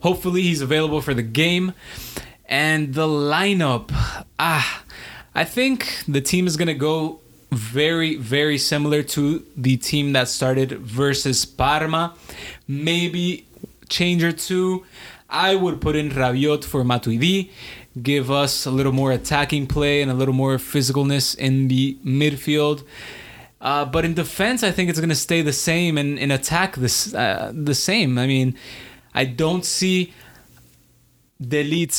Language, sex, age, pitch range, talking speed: English, male, 20-39, 130-155 Hz, 145 wpm